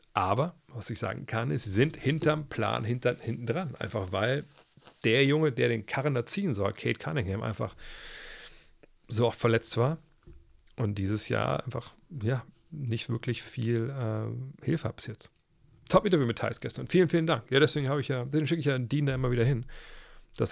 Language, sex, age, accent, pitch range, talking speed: German, male, 40-59, German, 105-130 Hz, 180 wpm